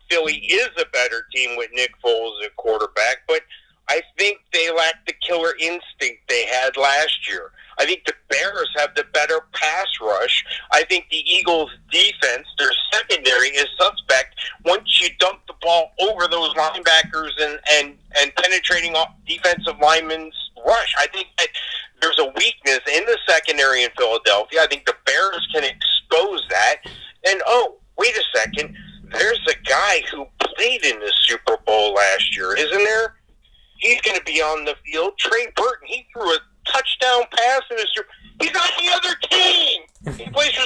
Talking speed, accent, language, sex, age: 170 wpm, American, English, male, 50-69